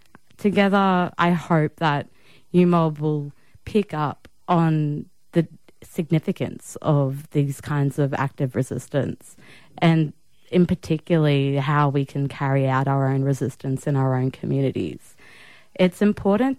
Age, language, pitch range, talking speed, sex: 20-39, English, 140-175 Hz, 125 wpm, female